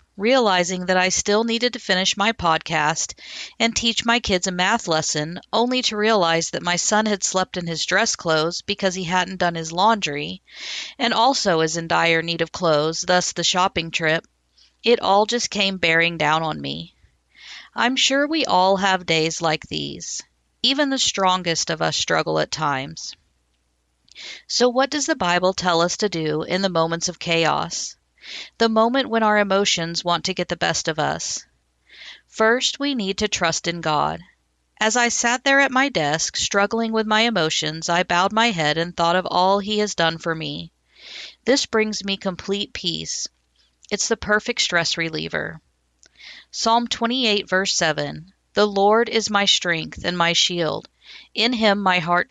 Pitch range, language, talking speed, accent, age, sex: 165-215 Hz, English, 175 wpm, American, 50-69, female